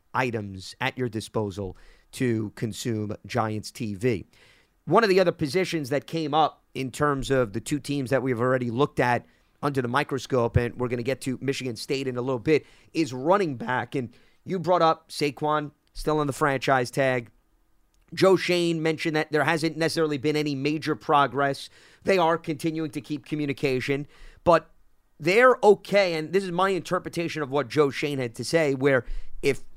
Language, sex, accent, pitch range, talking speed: English, male, American, 130-170 Hz, 180 wpm